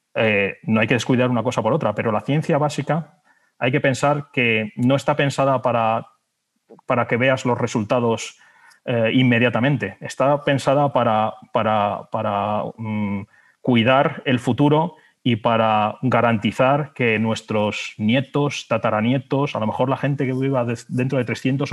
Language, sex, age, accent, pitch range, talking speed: Spanish, male, 30-49, Spanish, 105-130 Hz, 145 wpm